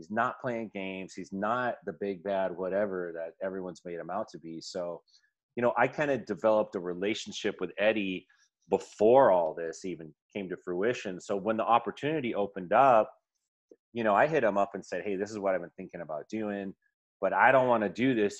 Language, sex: English, male